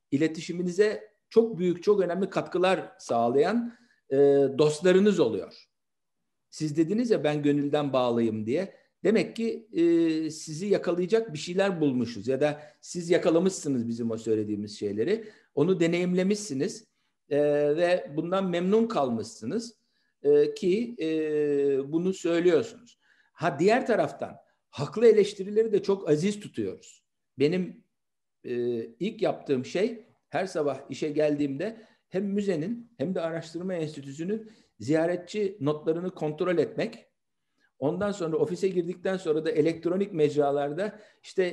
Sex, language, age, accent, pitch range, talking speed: male, Turkish, 60-79, native, 150-195 Hz, 115 wpm